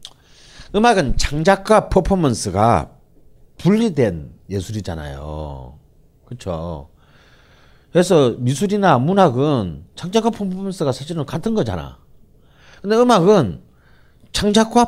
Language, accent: Korean, native